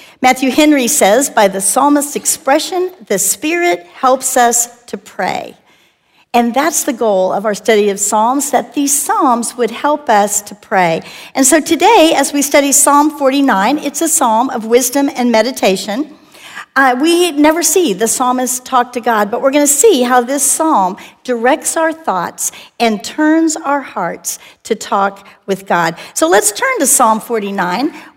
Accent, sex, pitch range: American, female, 225-290 Hz